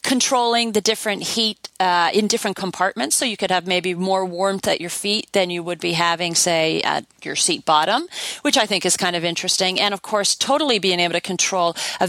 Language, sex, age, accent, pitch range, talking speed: English, female, 40-59, American, 175-220 Hz, 220 wpm